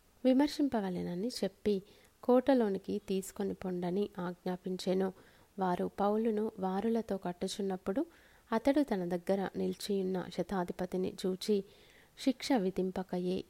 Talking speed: 80 wpm